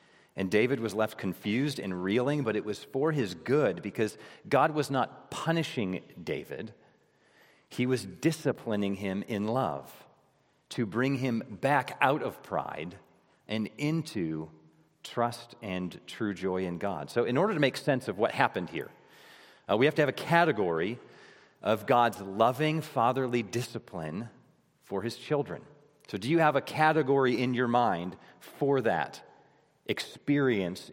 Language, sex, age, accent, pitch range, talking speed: English, male, 40-59, American, 110-150 Hz, 150 wpm